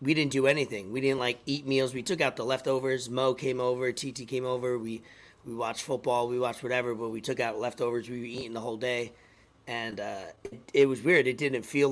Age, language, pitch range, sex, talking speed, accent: 40-59, English, 120-145 Hz, male, 235 wpm, American